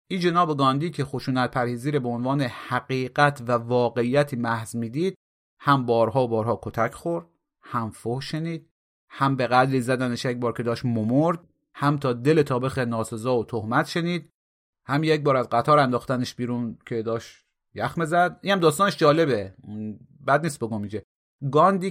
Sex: male